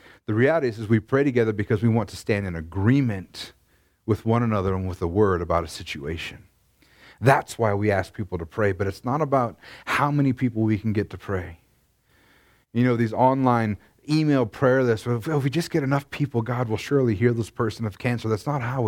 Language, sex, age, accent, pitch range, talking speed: English, male, 30-49, American, 105-140 Hz, 215 wpm